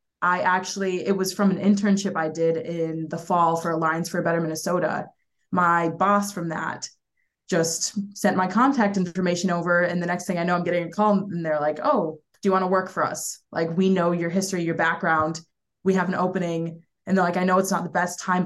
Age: 20-39